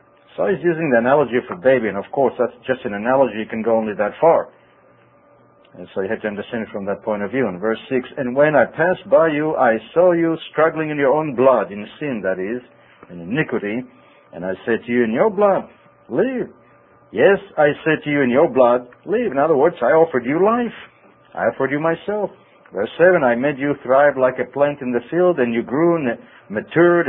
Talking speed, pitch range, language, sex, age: 225 wpm, 115-155 Hz, English, male, 60-79